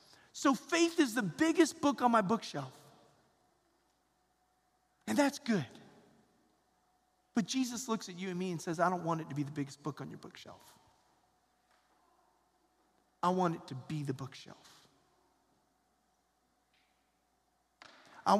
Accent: American